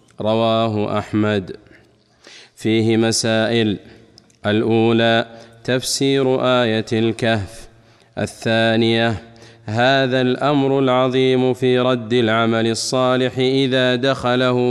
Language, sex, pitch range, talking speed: Arabic, male, 115-130 Hz, 75 wpm